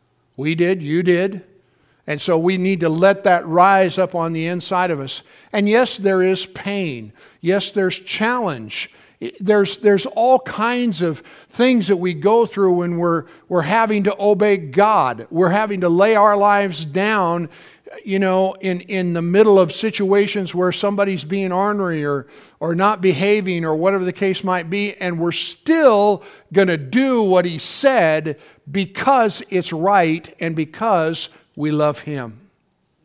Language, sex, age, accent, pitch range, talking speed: English, male, 50-69, American, 155-200 Hz, 160 wpm